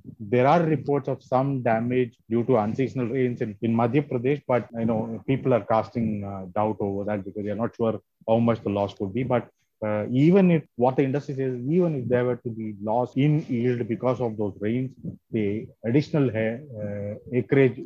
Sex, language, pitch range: male, English, 105-130 Hz